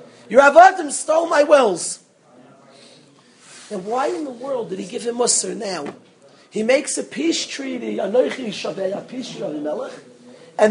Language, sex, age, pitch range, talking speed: English, male, 40-59, 200-295 Hz, 130 wpm